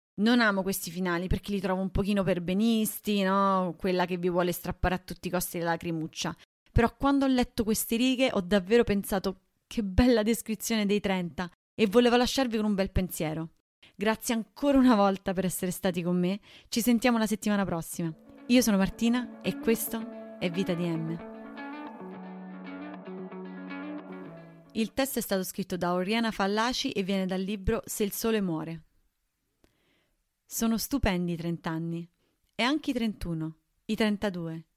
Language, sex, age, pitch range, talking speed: Italian, female, 30-49, 170-225 Hz, 160 wpm